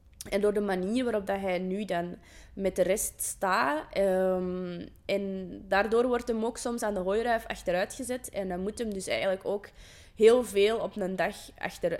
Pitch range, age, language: 180-230 Hz, 20-39, Dutch